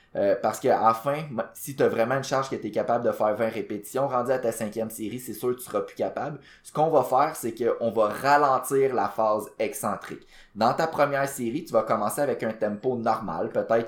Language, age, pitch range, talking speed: French, 20-39, 110-130 Hz, 230 wpm